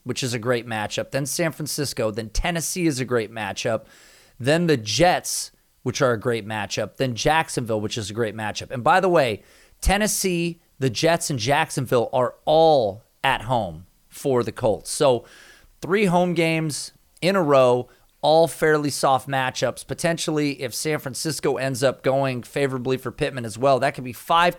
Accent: American